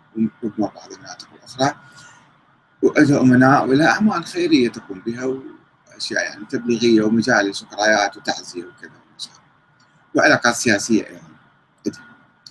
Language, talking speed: Arabic, 100 wpm